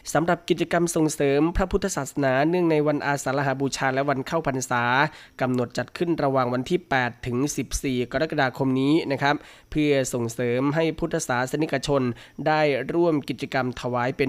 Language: Thai